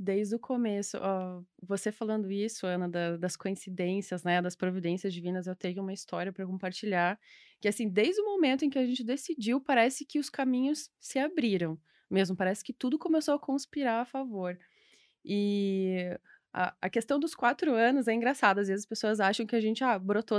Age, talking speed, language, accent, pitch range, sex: 20-39, 190 wpm, Portuguese, Brazilian, 195-260 Hz, female